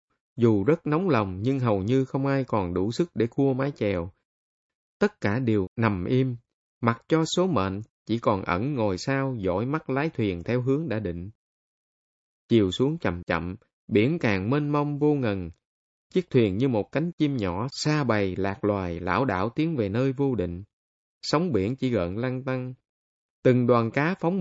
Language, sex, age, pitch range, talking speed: Vietnamese, male, 20-39, 100-145 Hz, 185 wpm